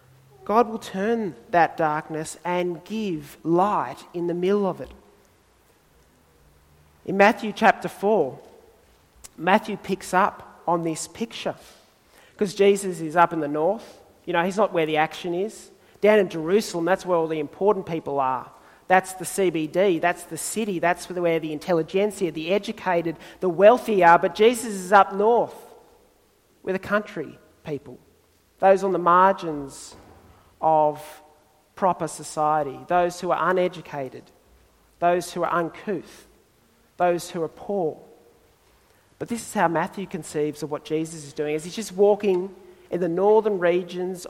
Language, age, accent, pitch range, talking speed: English, 40-59, Australian, 160-195 Hz, 150 wpm